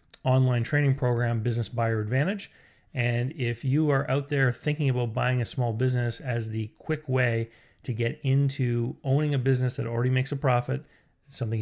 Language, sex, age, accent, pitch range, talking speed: English, male, 30-49, American, 115-135 Hz, 175 wpm